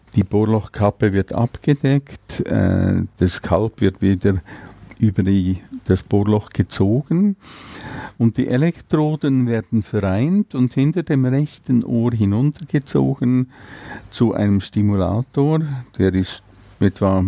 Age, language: 50-69, German